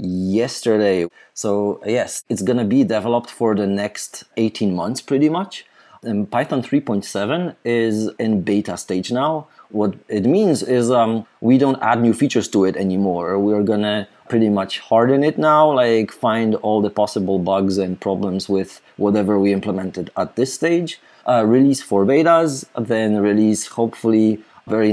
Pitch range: 100-130 Hz